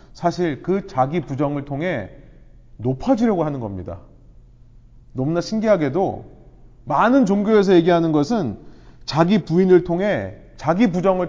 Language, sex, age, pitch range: Korean, male, 30-49, 135-210 Hz